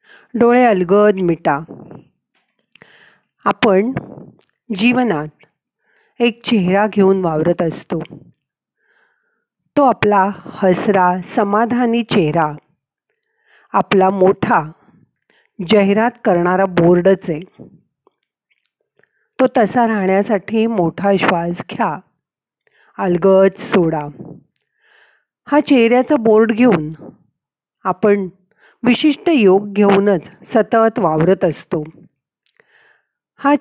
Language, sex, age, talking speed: Marathi, female, 40-59, 75 wpm